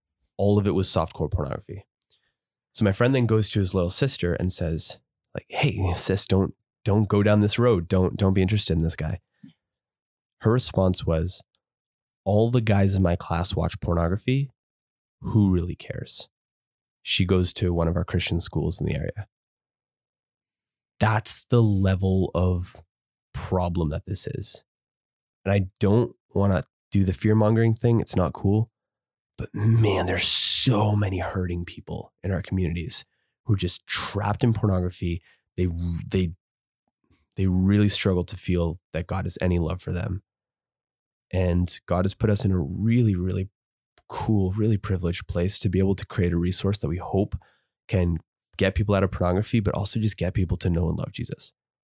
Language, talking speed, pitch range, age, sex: English, 170 wpm, 90-105 Hz, 20-39, male